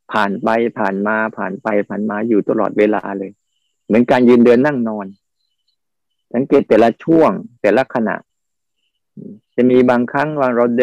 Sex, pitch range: male, 110-135 Hz